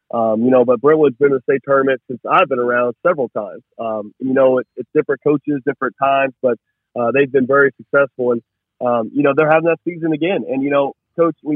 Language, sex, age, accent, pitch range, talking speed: English, male, 40-59, American, 120-145 Hz, 230 wpm